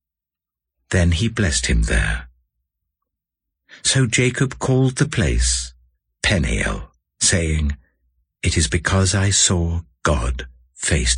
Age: 60-79